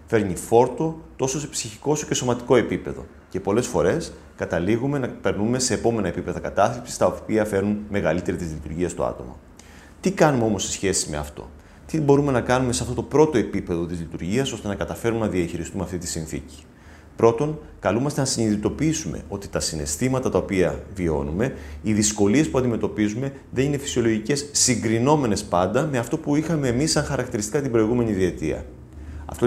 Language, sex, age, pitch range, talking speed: Greek, male, 30-49, 90-130 Hz, 170 wpm